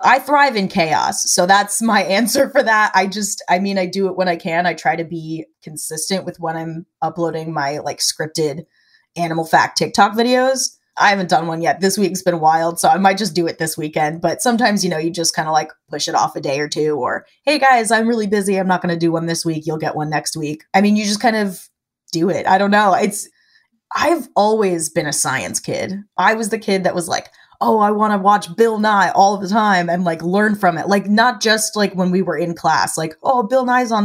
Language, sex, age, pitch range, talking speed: English, female, 20-39, 165-205 Hz, 250 wpm